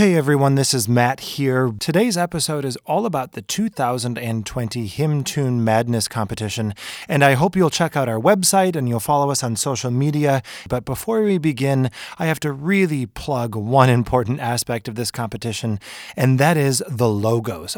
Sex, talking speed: male, 175 wpm